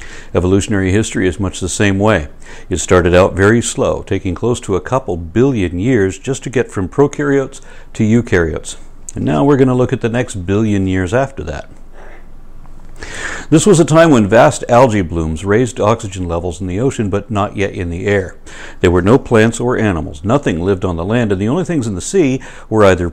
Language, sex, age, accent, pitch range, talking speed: English, male, 60-79, American, 95-125 Hz, 205 wpm